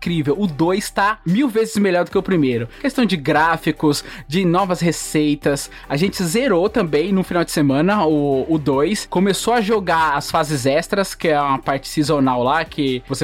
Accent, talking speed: Brazilian, 190 wpm